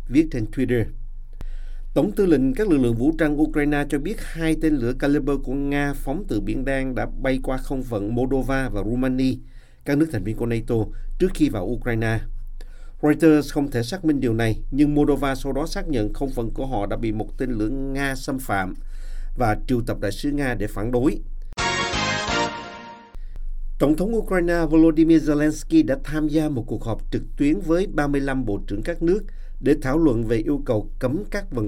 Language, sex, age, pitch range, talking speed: Vietnamese, male, 50-69, 115-150 Hz, 195 wpm